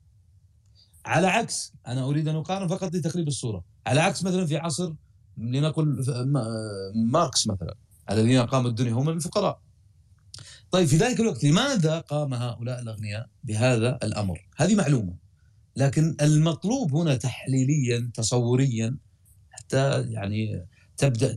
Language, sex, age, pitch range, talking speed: Arabic, male, 40-59, 110-155 Hz, 120 wpm